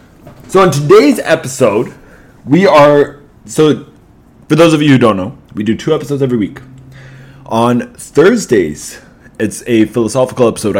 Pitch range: 115-145 Hz